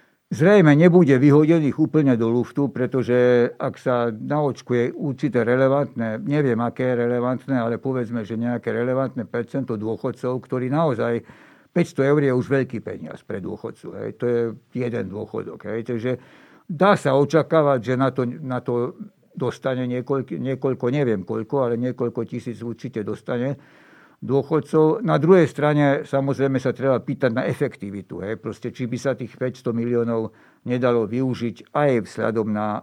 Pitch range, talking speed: 120-145 Hz, 145 wpm